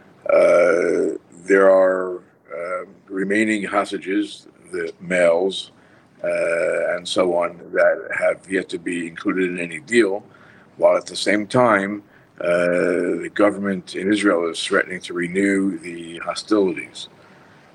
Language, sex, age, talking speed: English, male, 50-69, 125 wpm